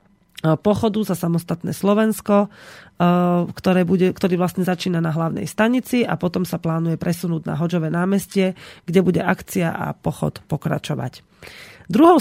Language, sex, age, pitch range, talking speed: Slovak, female, 30-49, 170-210 Hz, 135 wpm